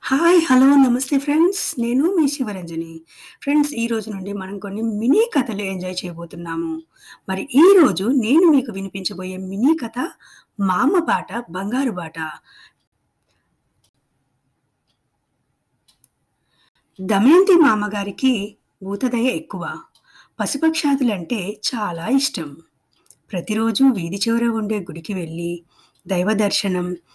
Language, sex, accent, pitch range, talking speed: Telugu, female, native, 185-260 Hz, 95 wpm